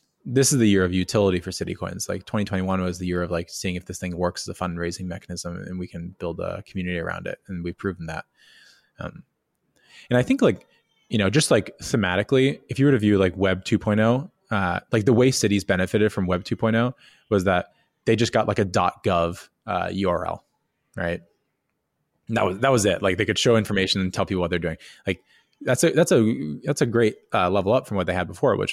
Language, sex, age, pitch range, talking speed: English, male, 20-39, 90-115 Hz, 230 wpm